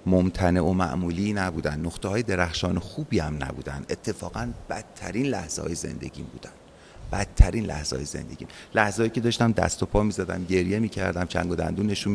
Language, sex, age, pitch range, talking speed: Persian, male, 30-49, 85-105 Hz, 165 wpm